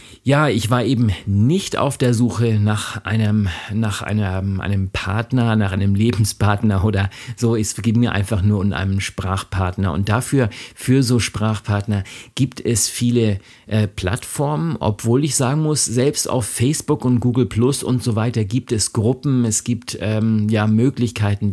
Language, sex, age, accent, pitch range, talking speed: German, male, 50-69, German, 105-120 Hz, 155 wpm